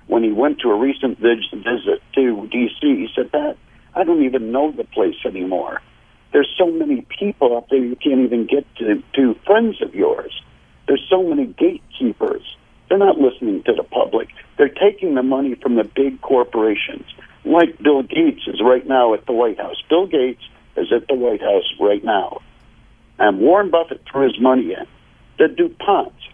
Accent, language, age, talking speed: American, English, 60-79, 180 wpm